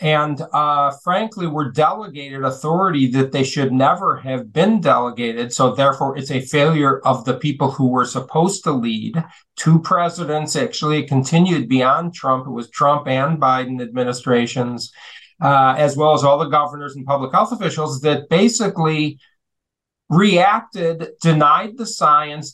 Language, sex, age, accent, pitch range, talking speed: English, male, 50-69, American, 135-170 Hz, 145 wpm